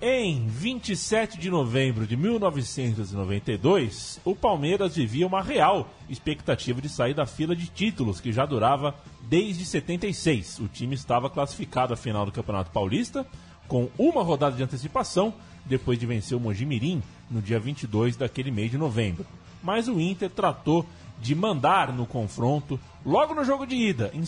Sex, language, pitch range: male, Portuguese, 120-175 Hz